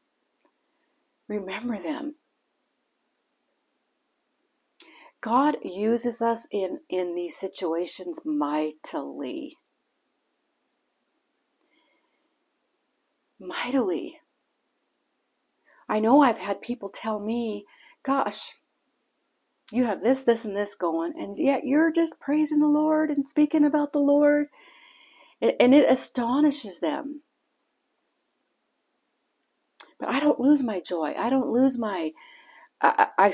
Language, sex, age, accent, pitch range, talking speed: English, female, 50-69, American, 210-310 Hz, 95 wpm